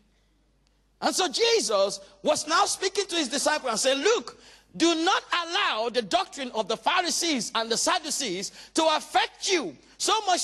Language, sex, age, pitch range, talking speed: English, male, 50-69, 215-300 Hz, 160 wpm